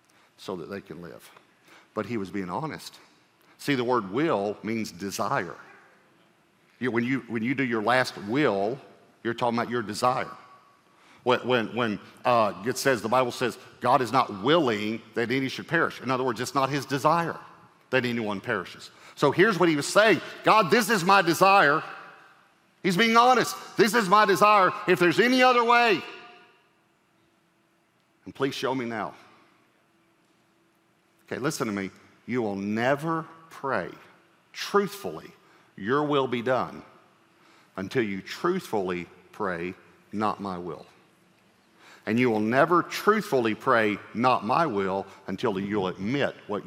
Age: 50-69